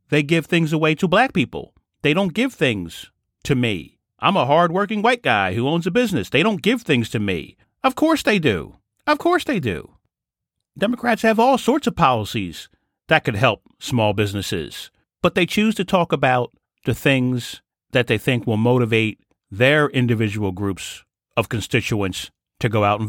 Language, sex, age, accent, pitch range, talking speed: English, male, 40-59, American, 110-175 Hz, 180 wpm